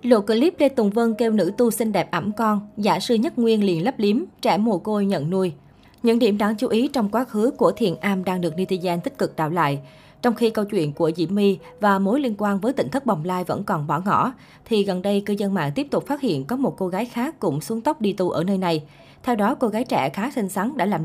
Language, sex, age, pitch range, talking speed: Vietnamese, female, 20-39, 175-225 Hz, 270 wpm